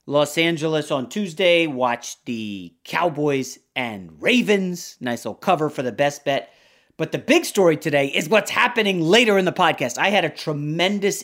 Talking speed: 170 wpm